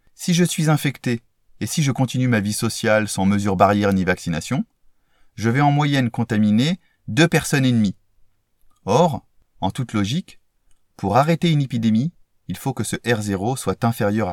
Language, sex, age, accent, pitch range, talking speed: French, male, 30-49, French, 100-130 Hz, 170 wpm